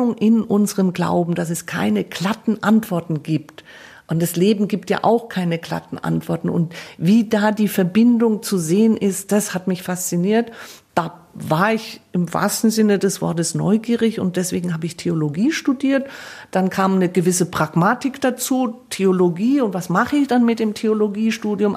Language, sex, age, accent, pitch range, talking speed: German, female, 50-69, German, 170-215 Hz, 165 wpm